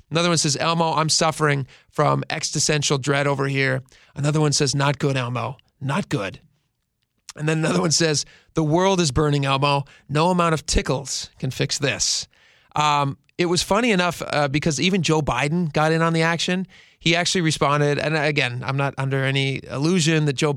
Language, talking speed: English, 185 wpm